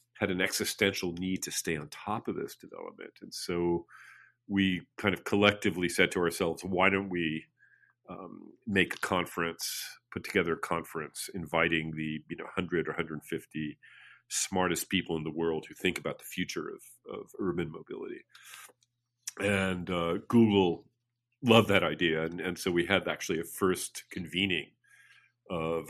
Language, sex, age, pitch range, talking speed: English, male, 40-59, 85-120 Hz, 155 wpm